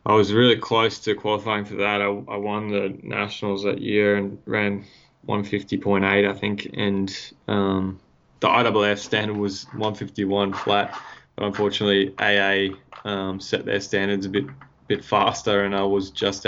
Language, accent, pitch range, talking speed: English, Australian, 100-105 Hz, 155 wpm